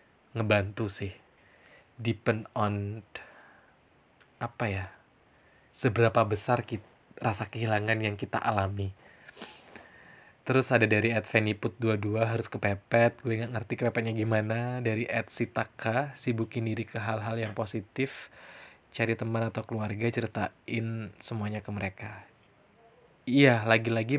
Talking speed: 110 wpm